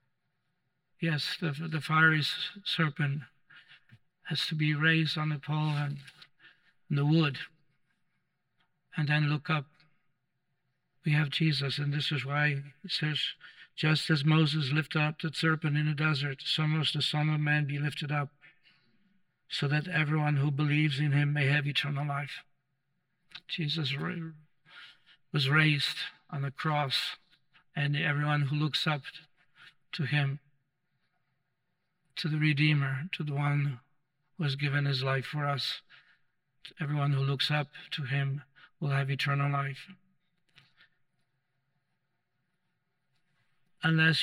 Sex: male